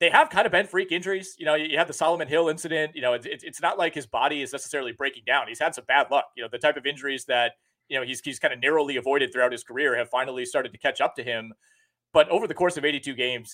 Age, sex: 30-49, male